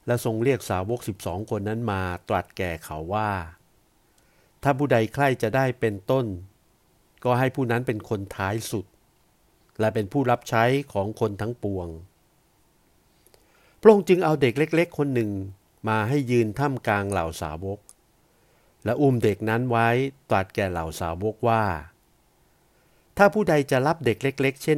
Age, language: 60-79, Thai